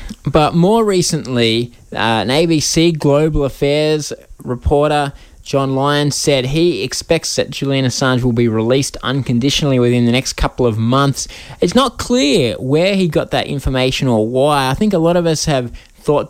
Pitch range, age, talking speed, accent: 115-145 Hz, 20-39, 165 wpm, Australian